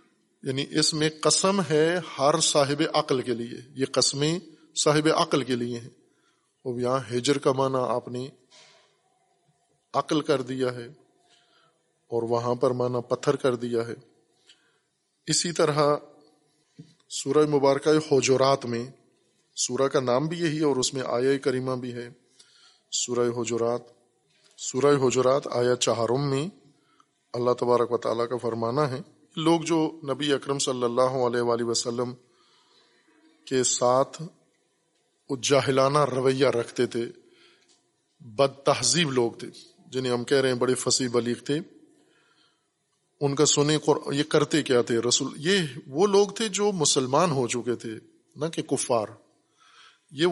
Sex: male